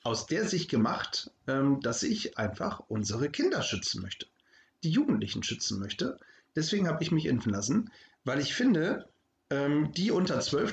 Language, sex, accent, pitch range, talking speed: German, male, German, 120-150 Hz, 150 wpm